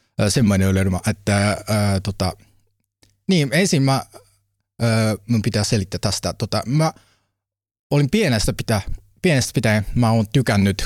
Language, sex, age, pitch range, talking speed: Finnish, male, 30-49, 95-115 Hz, 105 wpm